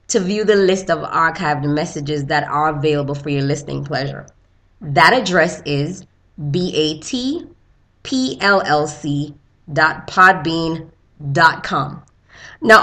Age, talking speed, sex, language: 20-39, 95 wpm, female, English